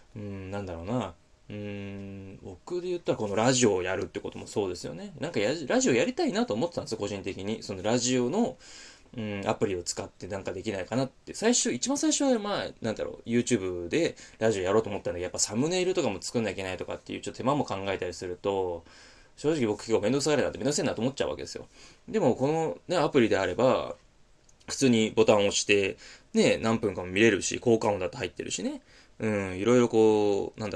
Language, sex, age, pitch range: Japanese, male, 20-39, 100-145 Hz